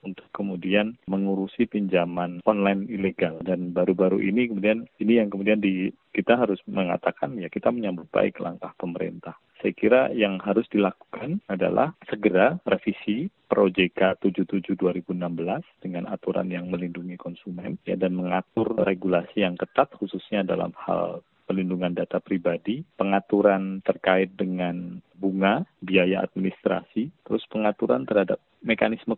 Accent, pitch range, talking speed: native, 90-105 Hz, 130 wpm